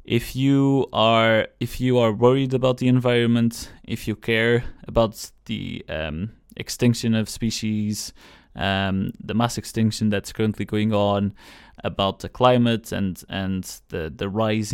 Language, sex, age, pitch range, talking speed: English, male, 20-39, 105-120 Hz, 145 wpm